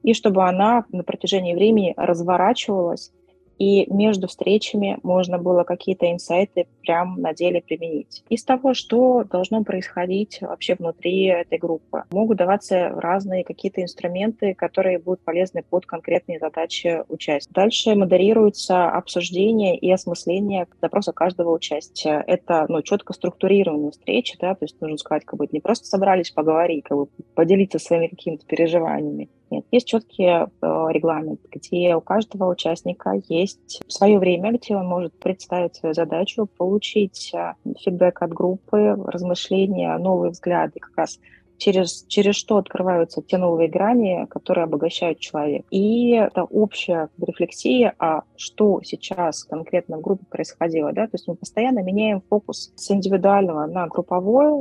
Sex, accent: female, native